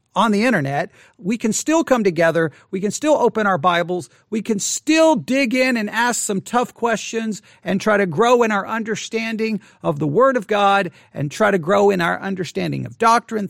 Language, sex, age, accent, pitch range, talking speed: English, male, 40-59, American, 165-225 Hz, 200 wpm